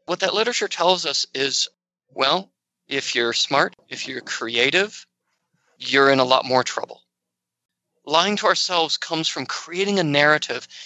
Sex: male